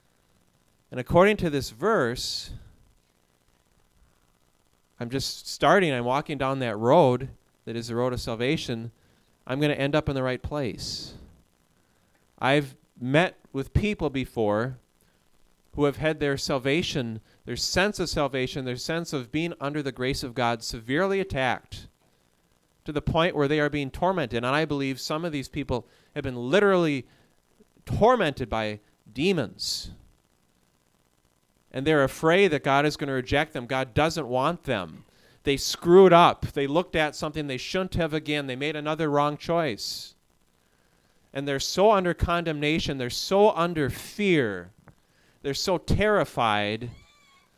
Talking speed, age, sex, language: 145 wpm, 30-49, male, English